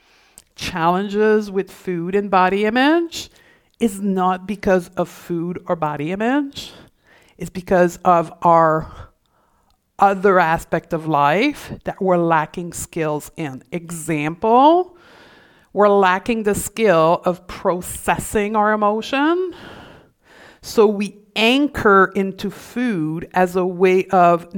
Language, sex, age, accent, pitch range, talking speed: English, female, 50-69, American, 180-225 Hz, 110 wpm